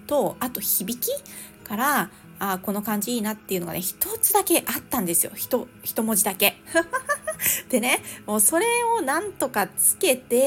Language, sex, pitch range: Japanese, female, 190-255 Hz